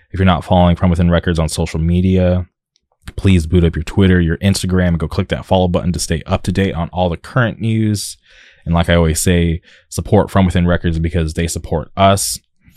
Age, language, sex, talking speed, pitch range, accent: 20-39, English, male, 215 wpm, 80-95 Hz, American